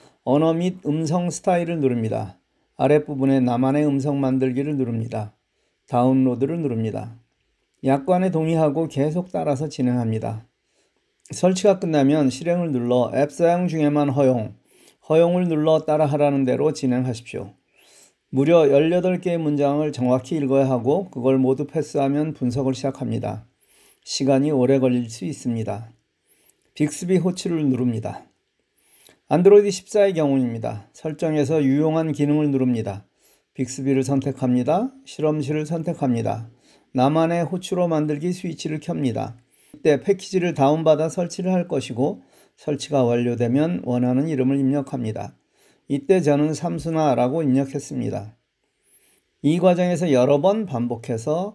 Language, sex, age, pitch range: Korean, male, 40-59, 125-160 Hz